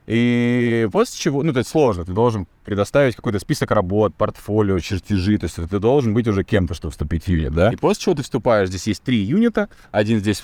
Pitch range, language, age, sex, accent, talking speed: 95-130 Hz, Russian, 20-39, male, native, 215 wpm